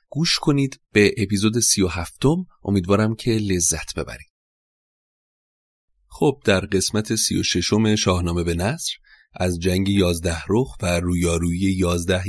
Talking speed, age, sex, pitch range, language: 130 wpm, 30-49, male, 90-105 Hz, Persian